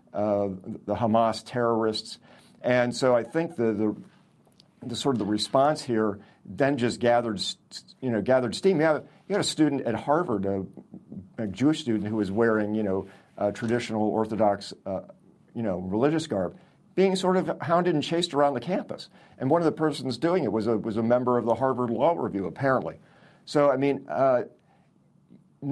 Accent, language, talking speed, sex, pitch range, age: American, English, 185 wpm, male, 105-135 Hz, 50-69